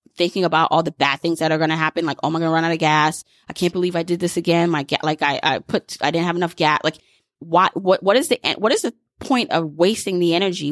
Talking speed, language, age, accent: 275 wpm, English, 20-39, American